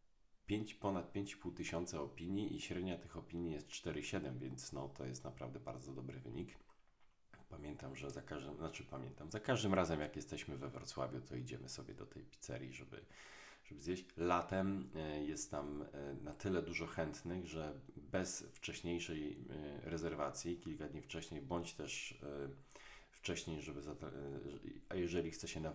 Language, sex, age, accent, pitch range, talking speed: Polish, male, 40-59, native, 70-85 Hz, 145 wpm